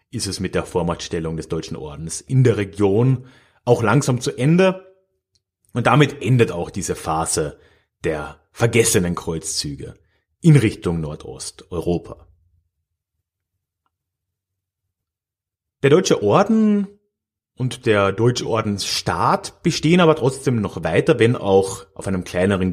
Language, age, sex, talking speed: German, 30-49, male, 115 wpm